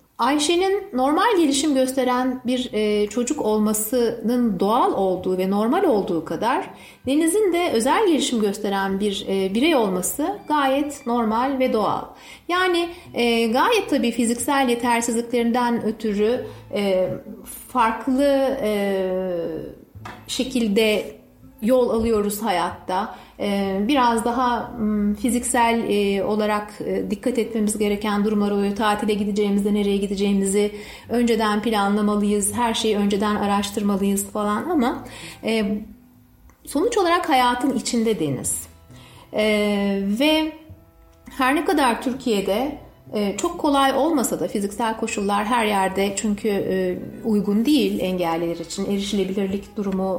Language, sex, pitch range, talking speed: Turkish, female, 205-255 Hz, 100 wpm